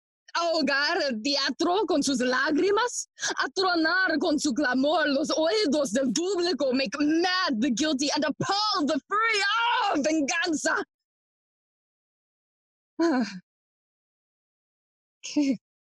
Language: English